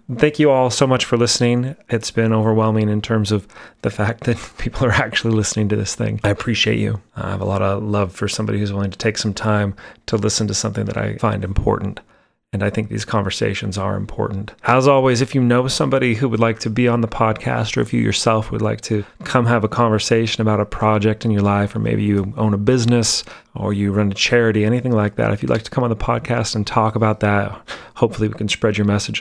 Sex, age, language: male, 30-49, English